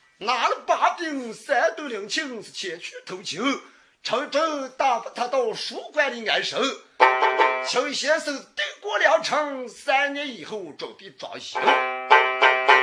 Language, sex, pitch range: Chinese, male, 240-395 Hz